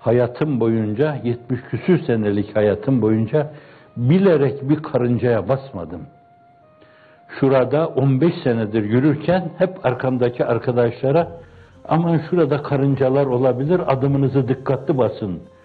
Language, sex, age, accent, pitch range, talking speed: Turkish, male, 60-79, native, 120-155 Hz, 95 wpm